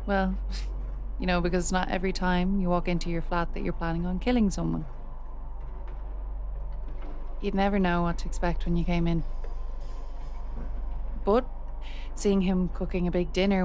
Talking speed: 160 wpm